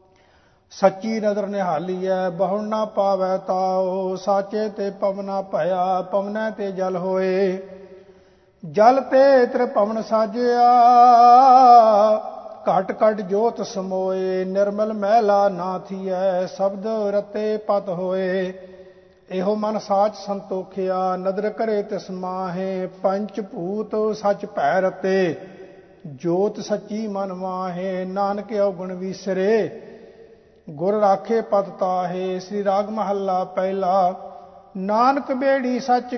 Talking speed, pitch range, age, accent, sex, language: 100 wpm, 185-215 Hz, 50-69, Indian, male, English